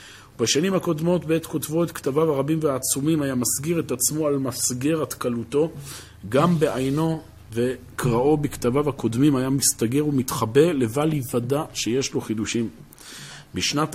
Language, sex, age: Hebrew, male, 40-59